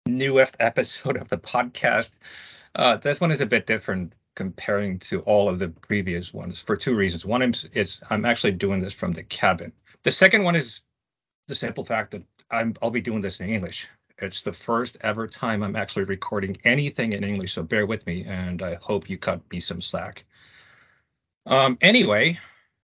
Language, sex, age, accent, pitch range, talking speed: Finnish, male, 40-59, American, 90-120 Hz, 190 wpm